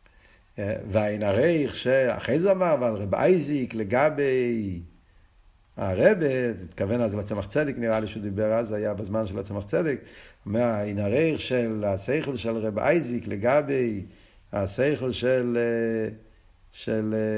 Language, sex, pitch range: Hebrew, male, 100-130 Hz